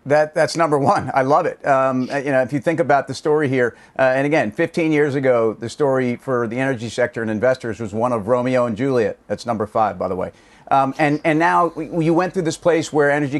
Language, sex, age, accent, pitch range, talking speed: English, male, 40-59, American, 130-155 Hz, 240 wpm